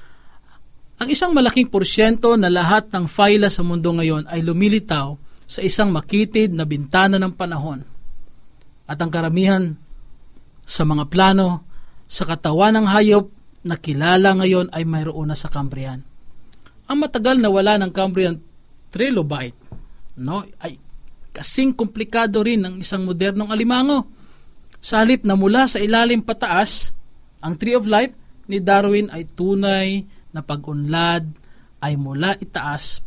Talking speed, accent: 130 wpm, native